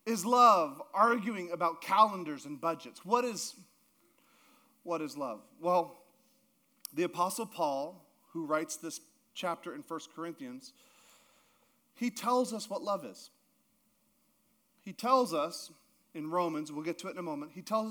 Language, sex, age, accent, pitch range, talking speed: English, male, 40-59, American, 185-250 Hz, 145 wpm